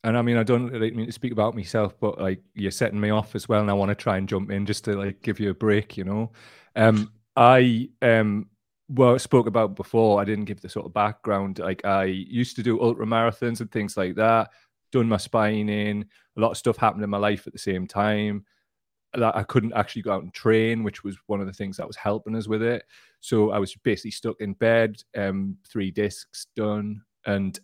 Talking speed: 235 wpm